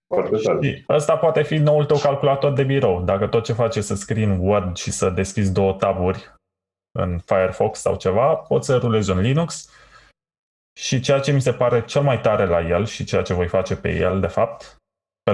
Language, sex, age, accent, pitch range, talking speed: Romanian, male, 20-39, native, 95-120 Hz, 205 wpm